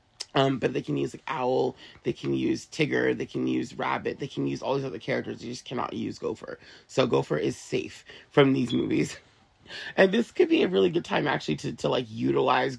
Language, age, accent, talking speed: English, 30-49, American, 220 wpm